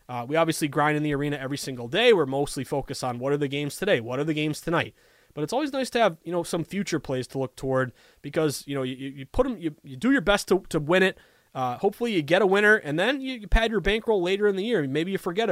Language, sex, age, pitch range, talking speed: English, male, 20-39, 140-195 Hz, 280 wpm